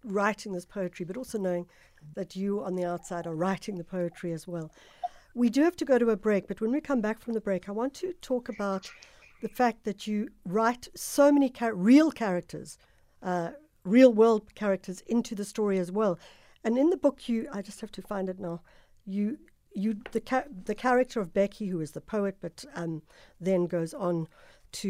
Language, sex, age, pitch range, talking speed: English, female, 60-79, 180-235 Hz, 205 wpm